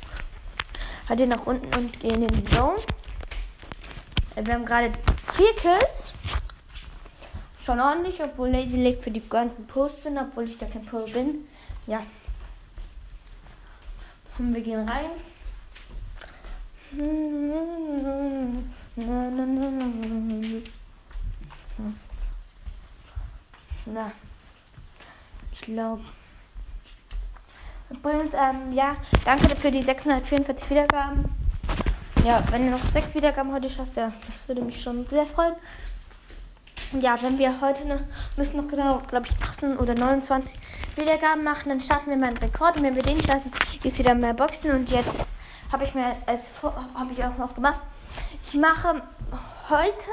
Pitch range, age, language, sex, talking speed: 235-290 Hz, 20-39, German, female, 125 wpm